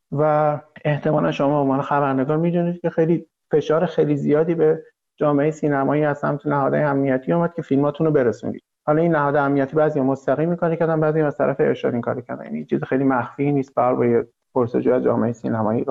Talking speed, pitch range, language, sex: 175 wpm, 130-160 Hz, Persian, male